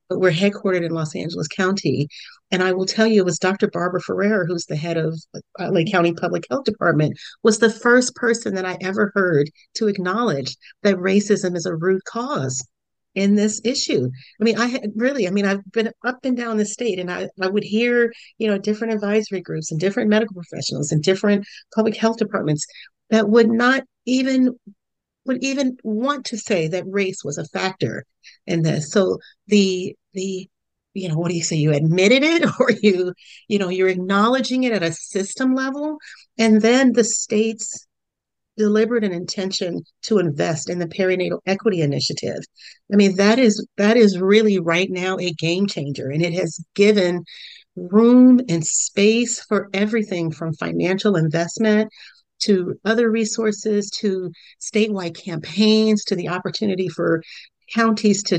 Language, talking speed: English, 170 wpm